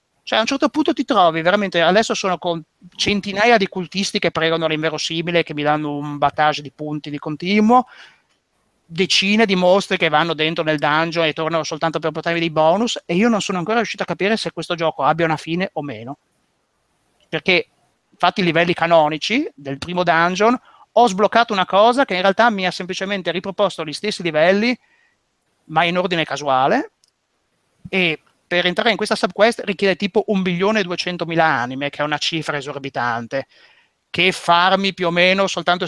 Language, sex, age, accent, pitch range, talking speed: Italian, male, 30-49, native, 145-195 Hz, 175 wpm